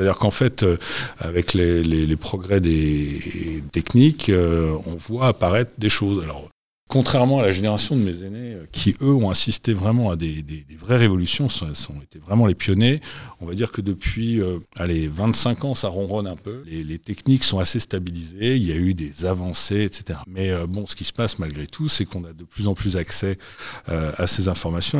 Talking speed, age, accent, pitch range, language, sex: 210 wpm, 50-69, French, 85-110 Hz, French, male